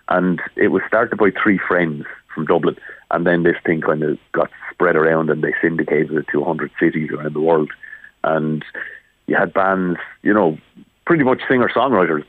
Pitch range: 90-110 Hz